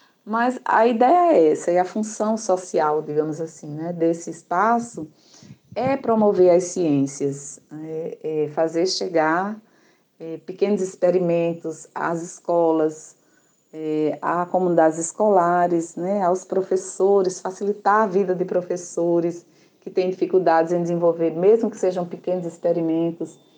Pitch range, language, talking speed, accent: 165-200 Hz, Portuguese, 125 wpm, Brazilian